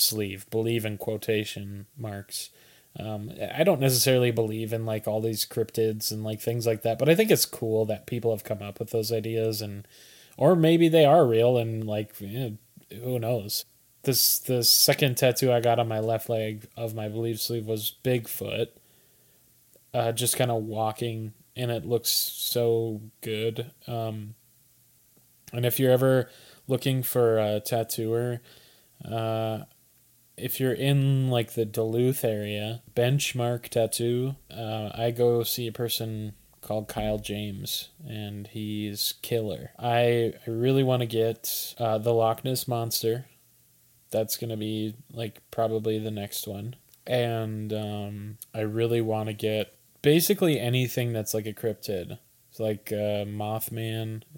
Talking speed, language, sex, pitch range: 150 wpm, English, male, 110-125 Hz